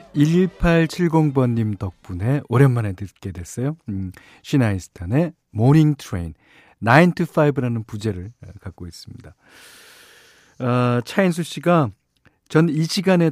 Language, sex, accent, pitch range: Korean, male, native, 110-175 Hz